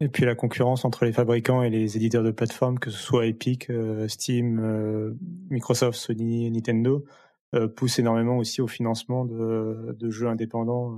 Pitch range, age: 110-120 Hz, 30-49